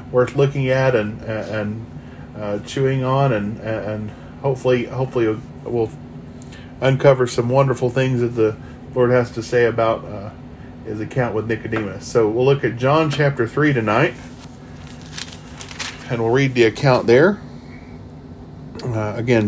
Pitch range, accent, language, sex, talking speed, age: 120-165 Hz, American, English, male, 140 wpm, 40-59